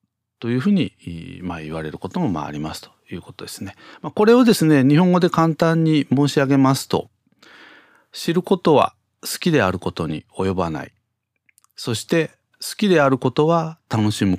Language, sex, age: Japanese, male, 40-59